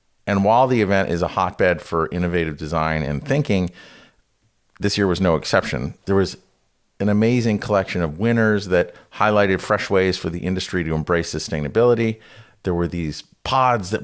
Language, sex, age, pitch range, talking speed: English, male, 40-59, 80-105 Hz, 165 wpm